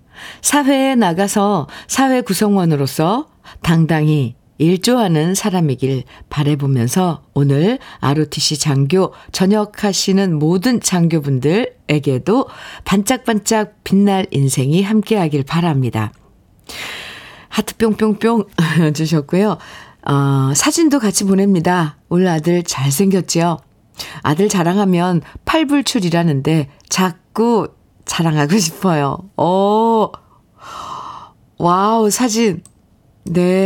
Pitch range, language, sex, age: 160-220 Hz, Korean, female, 50-69